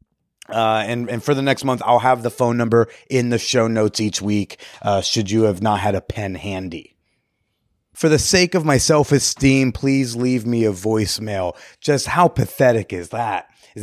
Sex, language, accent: male, English, American